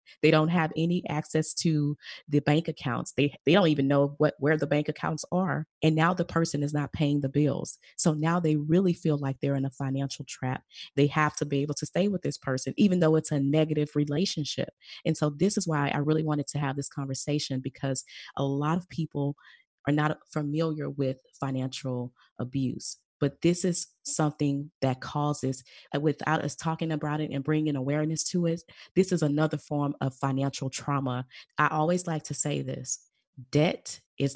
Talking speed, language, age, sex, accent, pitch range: 195 wpm, English, 30-49, female, American, 140-160 Hz